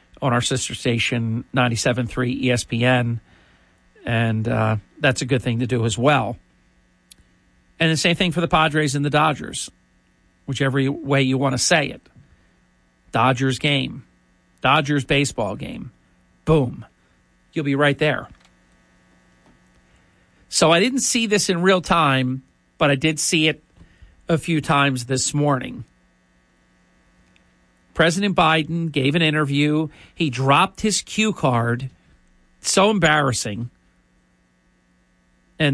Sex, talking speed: male, 125 wpm